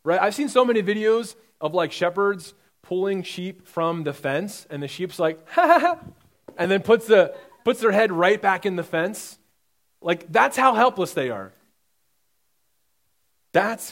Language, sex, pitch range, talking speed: English, male, 155-220 Hz, 175 wpm